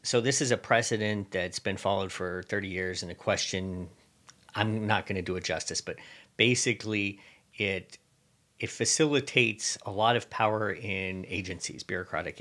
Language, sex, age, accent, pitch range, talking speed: English, male, 50-69, American, 90-110 Hz, 150 wpm